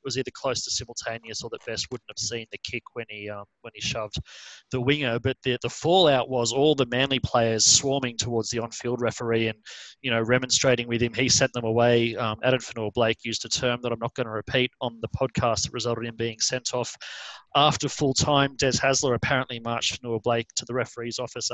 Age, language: 30-49, English